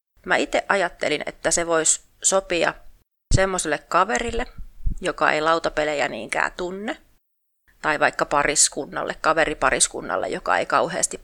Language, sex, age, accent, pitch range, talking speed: Finnish, female, 30-49, native, 130-180 Hz, 115 wpm